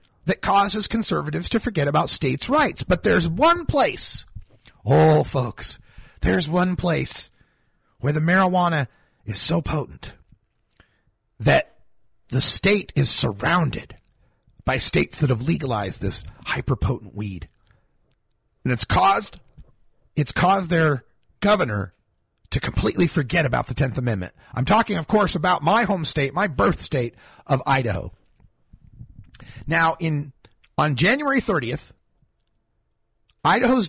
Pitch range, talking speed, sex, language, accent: 115-190 Hz, 120 wpm, male, English, American